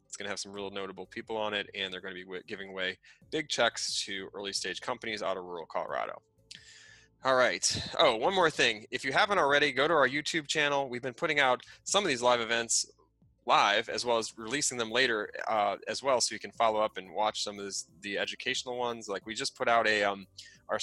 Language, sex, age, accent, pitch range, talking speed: English, male, 20-39, American, 100-120 Hz, 235 wpm